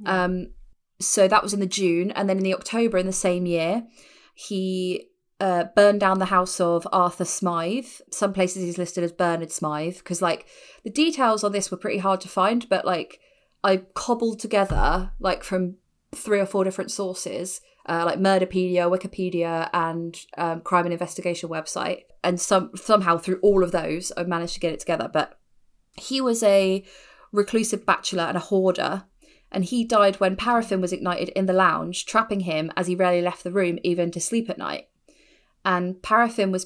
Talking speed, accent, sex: 185 wpm, British, female